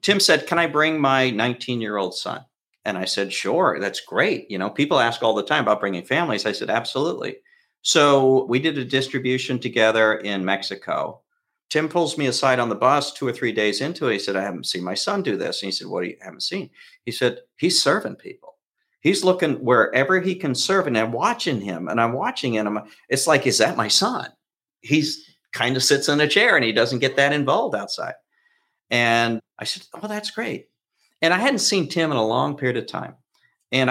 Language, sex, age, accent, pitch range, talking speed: English, male, 50-69, American, 120-165 Hz, 220 wpm